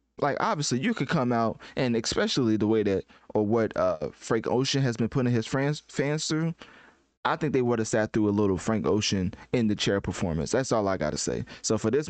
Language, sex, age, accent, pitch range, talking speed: English, male, 20-39, American, 105-130 Hz, 230 wpm